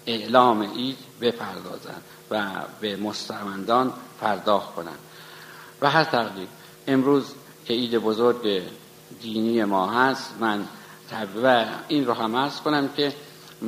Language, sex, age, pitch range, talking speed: Persian, male, 50-69, 105-125 Hz, 115 wpm